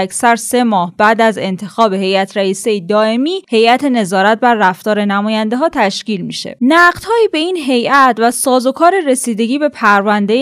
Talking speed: 155 wpm